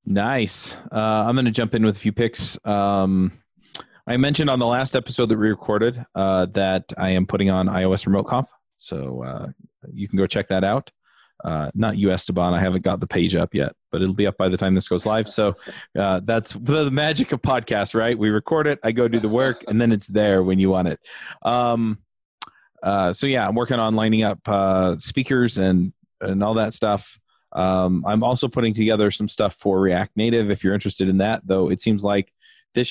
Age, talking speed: 20-39, 215 wpm